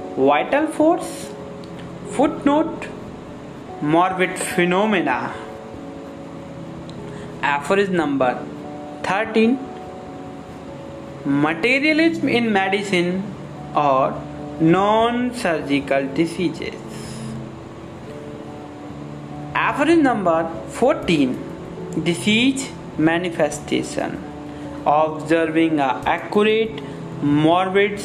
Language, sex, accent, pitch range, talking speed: Hindi, male, native, 140-230 Hz, 50 wpm